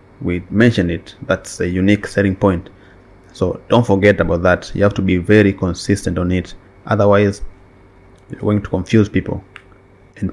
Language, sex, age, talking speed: English, male, 30-49, 165 wpm